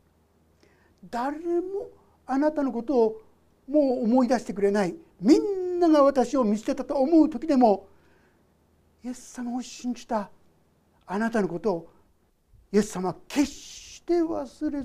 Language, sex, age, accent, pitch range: Japanese, male, 60-79, native, 180-300 Hz